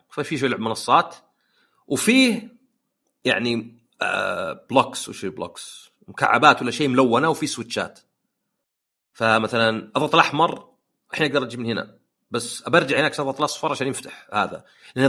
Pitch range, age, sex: 115-165 Hz, 40-59, male